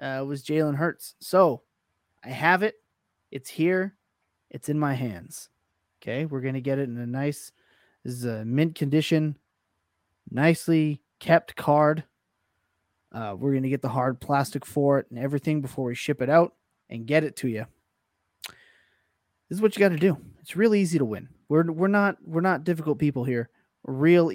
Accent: American